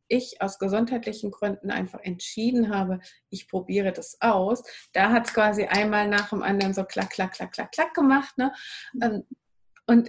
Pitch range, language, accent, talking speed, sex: 190-225 Hz, German, German, 165 wpm, female